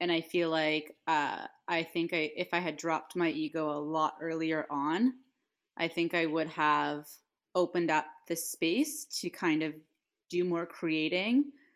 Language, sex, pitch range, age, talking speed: English, female, 165-255 Hz, 20-39, 170 wpm